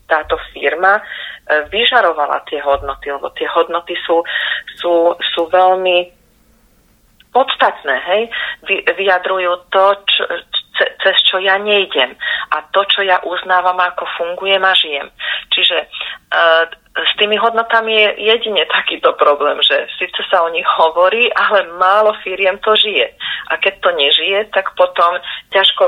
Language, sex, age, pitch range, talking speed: Slovak, female, 30-49, 150-195 Hz, 135 wpm